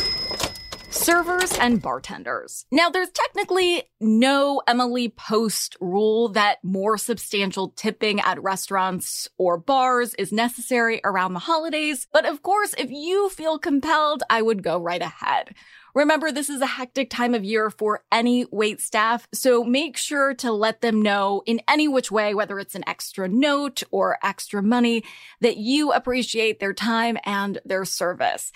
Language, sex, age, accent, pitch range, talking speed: English, female, 20-39, American, 210-290 Hz, 155 wpm